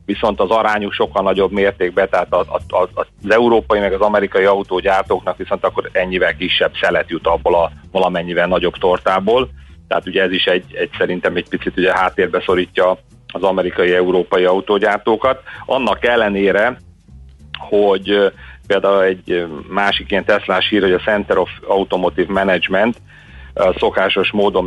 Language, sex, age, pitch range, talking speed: Hungarian, male, 40-59, 90-100 Hz, 145 wpm